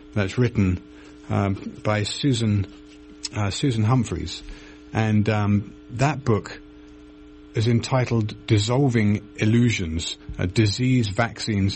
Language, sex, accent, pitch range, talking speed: English, male, British, 90-115 Hz, 95 wpm